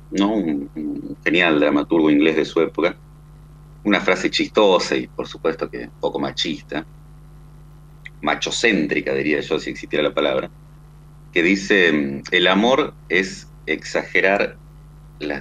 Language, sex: Spanish, male